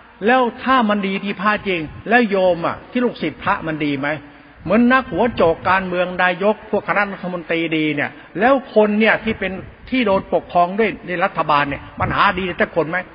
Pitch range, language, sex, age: 160-220 Hz, Thai, male, 60-79